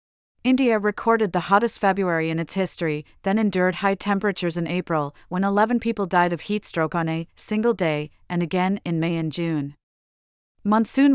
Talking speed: 165 wpm